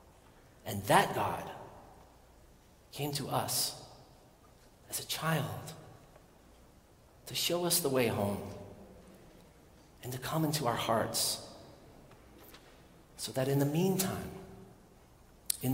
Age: 40-59